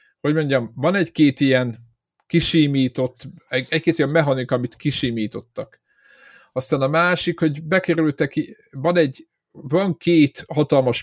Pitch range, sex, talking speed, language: 120-155 Hz, male, 120 wpm, Hungarian